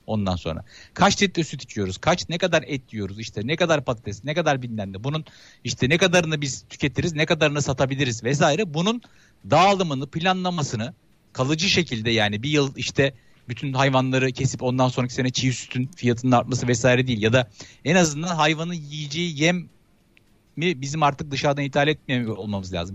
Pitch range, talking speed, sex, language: 130-175 Hz, 170 wpm, male, Turkish